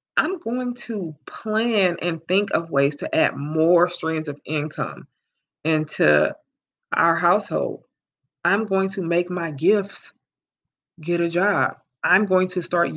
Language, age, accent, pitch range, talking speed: English, 20-39, American, 165-200 Hz, 140 wpm